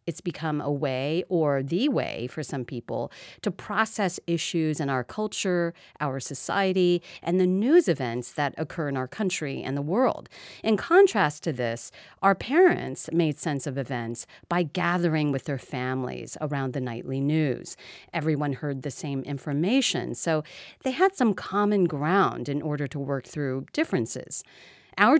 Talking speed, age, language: 160 wpm, 40-59, English